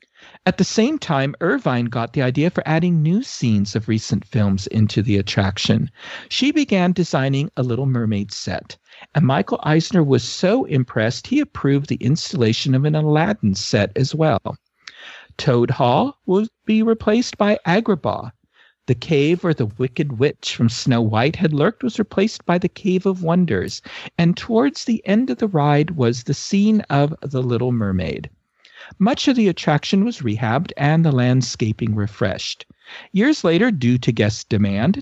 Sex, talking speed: male, 165 wpm